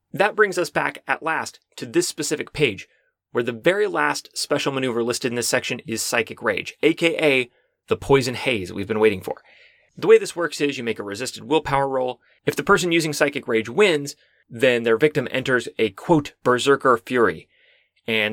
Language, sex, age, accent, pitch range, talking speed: English, male, 30-49, American, 120-170 Hz, 190 wpm